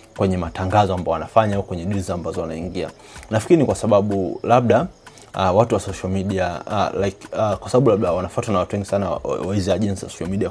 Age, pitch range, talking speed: 30-49, 90-110 Hz, 190 wpm